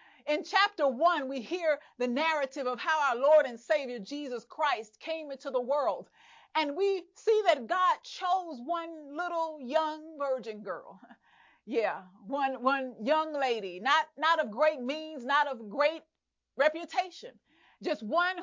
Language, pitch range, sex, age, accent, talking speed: English, 255-345 Hz, female, 40-59, American, 150 wpm